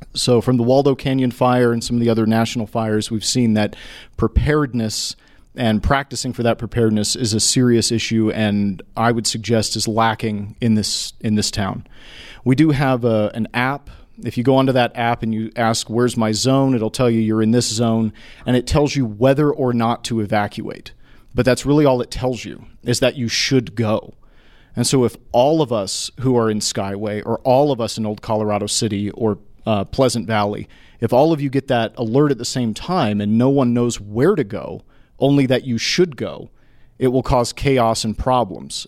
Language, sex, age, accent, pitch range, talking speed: English, male, 40-59, American, 110-130 Hz, 205 wpm